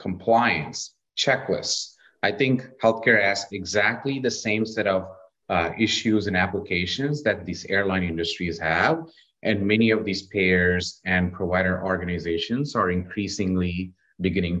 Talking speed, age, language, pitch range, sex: 125 wpm, 30-49, English, 95-115 Hz, male